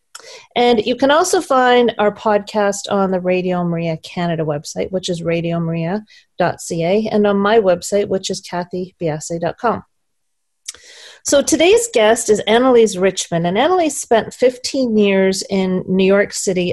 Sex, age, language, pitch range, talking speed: female, 40-59, English, 175-230 Hz, 135 wpm